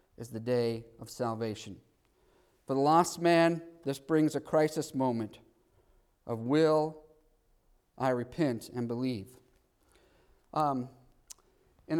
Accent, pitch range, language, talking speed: American, 130-165 Hz, English, 110 wpm